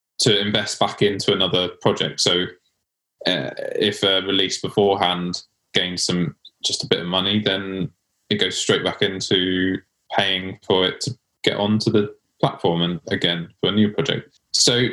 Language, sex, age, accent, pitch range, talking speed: English, male, 20-39, British, 95-110 Hz, 160 wpm